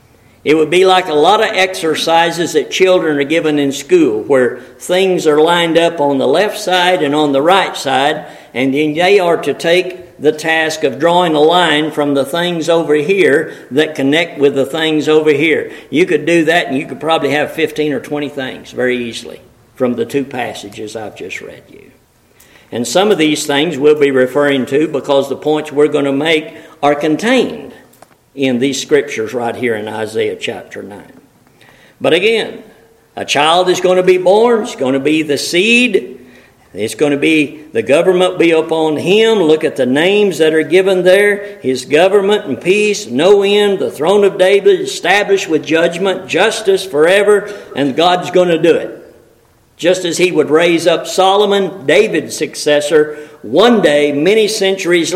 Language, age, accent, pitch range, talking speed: English, 50-69, American, 150-185 Hz, 185 wpm